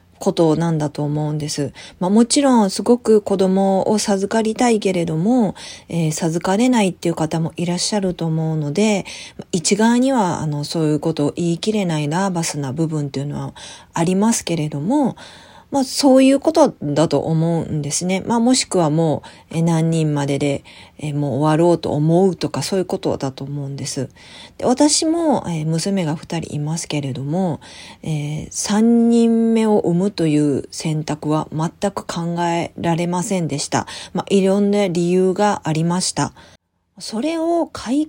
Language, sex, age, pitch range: Japanese, female, 40-59, 155-215 Hz